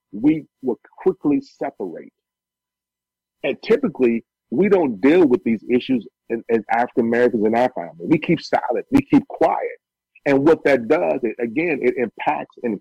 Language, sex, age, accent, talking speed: English, male, 40-59, American, 150 wpm